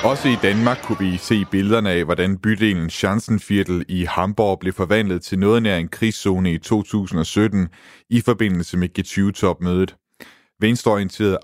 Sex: male